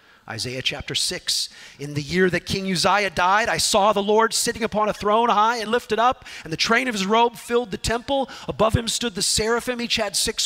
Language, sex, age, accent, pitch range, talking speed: English, male, 40-59, American, 160-245 Hz, 225 wpm